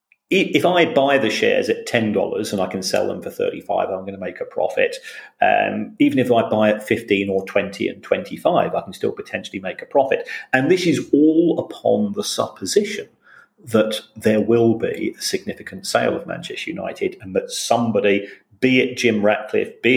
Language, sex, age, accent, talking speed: English, male, 40-59, British, 190 wpm